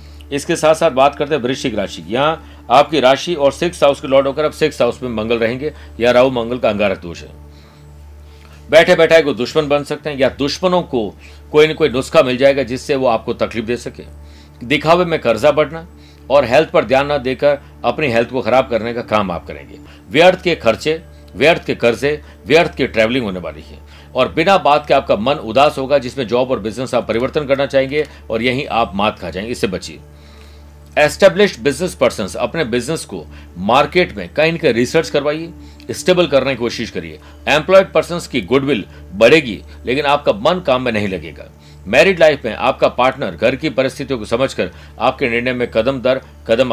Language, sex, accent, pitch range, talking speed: Hindi, male, native, 90-150 Hz, 200 wpm